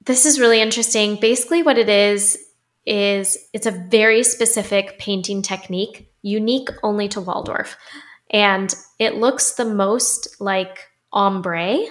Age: 10-29